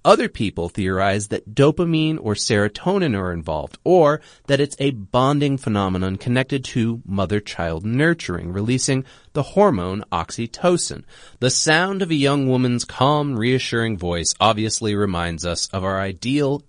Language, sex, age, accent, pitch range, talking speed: English, male, 30-49, American, 95-140 Hz, 135 wpm